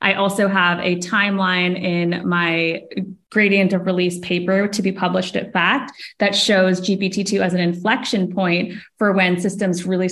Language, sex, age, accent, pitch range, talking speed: English, female, 20-39, American, 180-220 Hz, 160 wpm